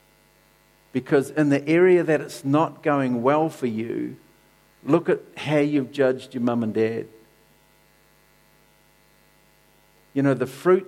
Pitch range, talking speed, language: 120-150 Hz, 130 wpm, English